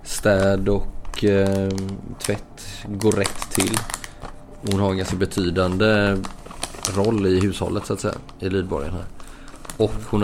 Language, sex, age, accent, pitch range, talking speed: Swedish, male, 20-39, native, 90-105 Hz, 135 wpm